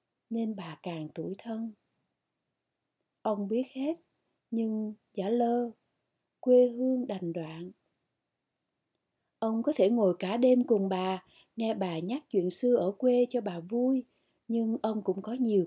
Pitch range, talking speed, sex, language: 190-250 Hz, 145 wpm, female, Vietnamese